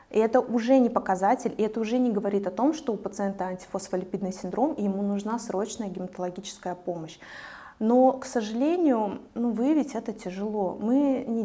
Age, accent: 20-39, native